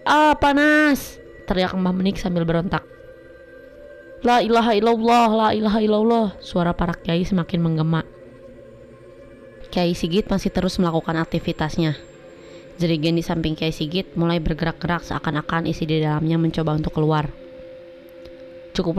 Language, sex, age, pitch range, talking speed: Indonesian, female, 20-39, 155-175 Hz, 120 wpm